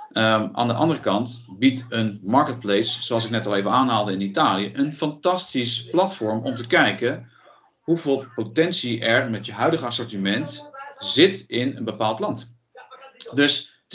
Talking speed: 150 wpm